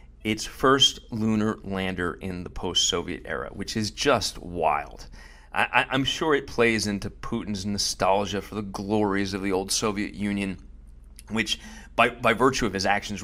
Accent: American